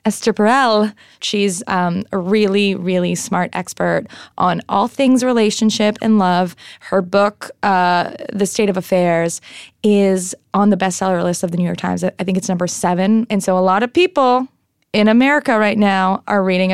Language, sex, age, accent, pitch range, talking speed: English, female, 20-39, American, 185-210 Hz, 175 wpm